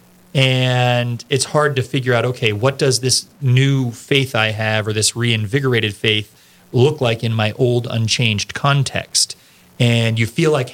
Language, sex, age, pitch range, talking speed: English, male, 30-49, 110-140 Hz, 160 wpm